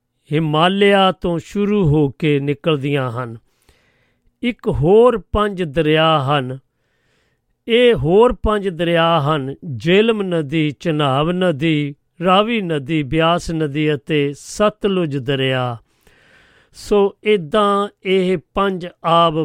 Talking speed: 100 wpm